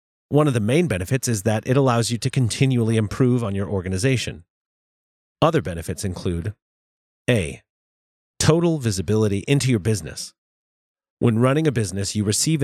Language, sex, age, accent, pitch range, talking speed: English, male, 30-49, American, 95-130 Hz, 145 wpm